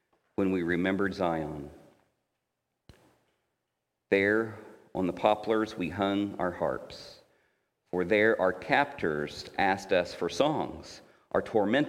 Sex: male